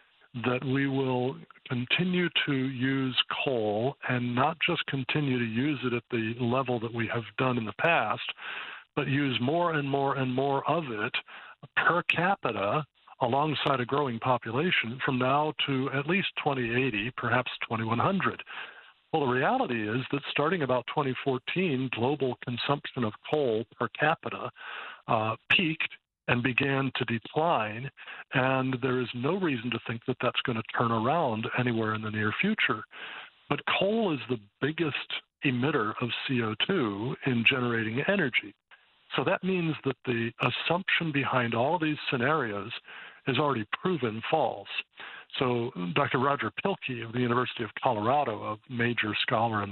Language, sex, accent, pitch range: English, male, American, 120-140 Hz